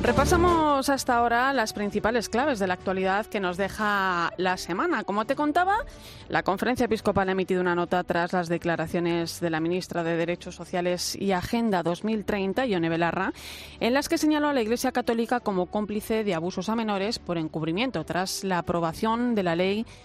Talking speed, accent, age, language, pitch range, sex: 180 wpm, Spanish, 30-49, Spanish, 175-225 Hz, female